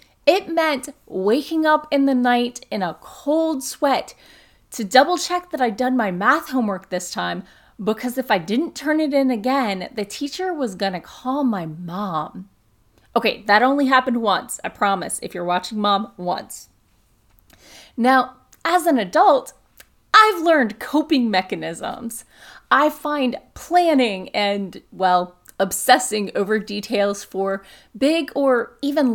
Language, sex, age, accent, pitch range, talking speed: English, female, 30-49, American, 205-285 Hz, 140 wpm